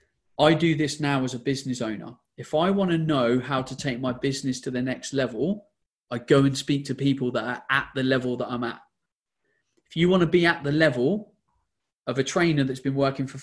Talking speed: 230 wpm